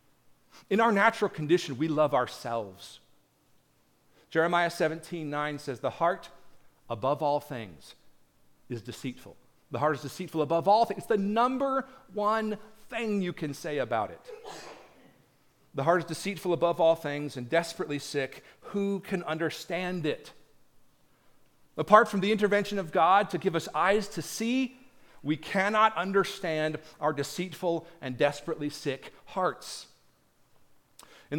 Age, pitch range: 40-59, 145-190 Hz